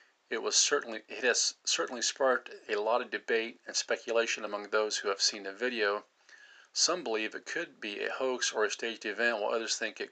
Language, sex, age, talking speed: English, male, 50-69, 210 wpm